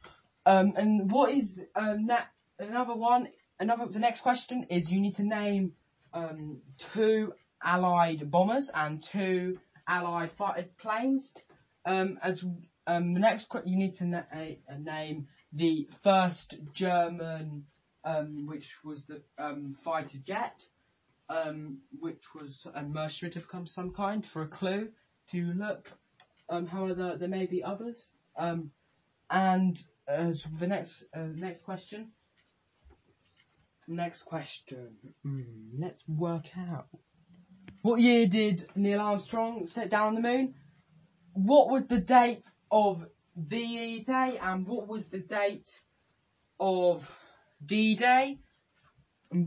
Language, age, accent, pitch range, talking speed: English, 20-39, British, 165-210 Hz, 130 wpm